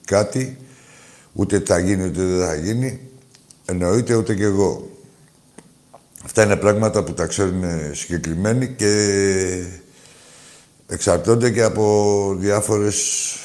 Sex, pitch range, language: male, 85-120 Hz, Greek